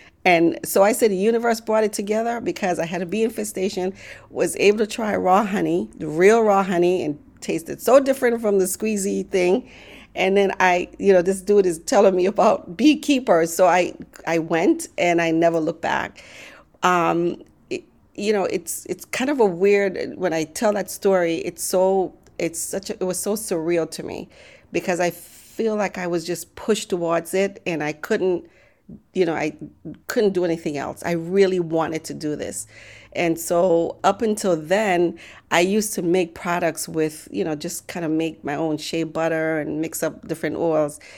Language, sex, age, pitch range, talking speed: English, female, 40-59, 165-200 Hz, 190 wpm